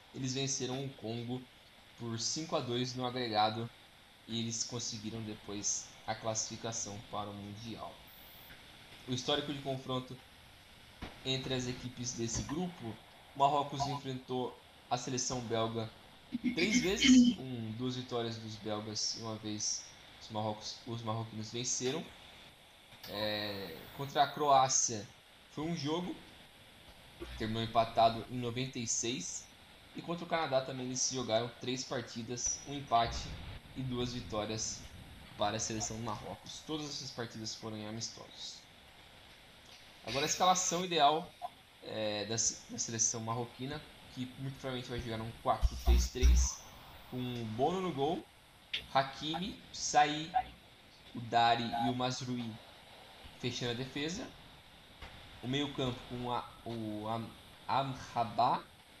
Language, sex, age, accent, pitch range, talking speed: Portuguese, male, 10-29, Brazilian, 110-130 Hz, 125 wpm